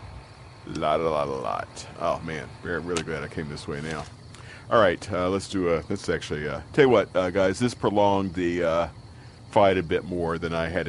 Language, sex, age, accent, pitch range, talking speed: English, male, 40-59, American, 80-100 Hz, 225 wpm